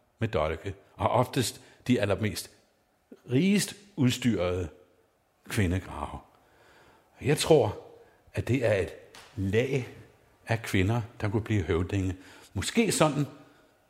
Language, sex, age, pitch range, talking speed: Danish, male, 60-79, 105-135 Hz, 105 wpm